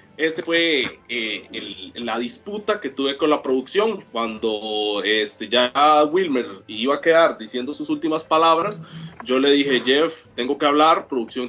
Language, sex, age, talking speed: Spanish, male, 30-49, 145 wpm